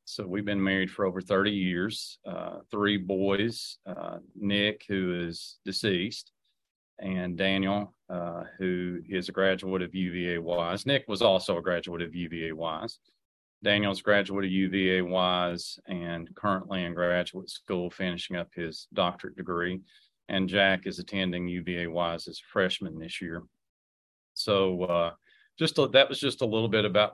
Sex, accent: male, American